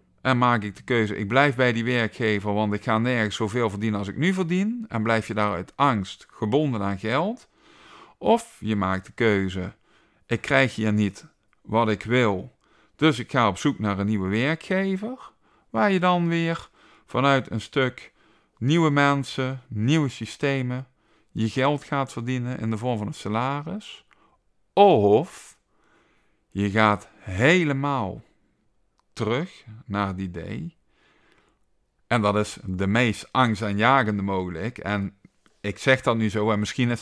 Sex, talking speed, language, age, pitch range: male, 155 wpm, Dutch, 50-69, 110-145 Hz